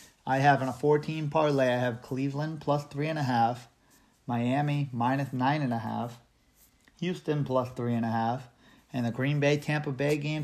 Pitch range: 125-145 Hz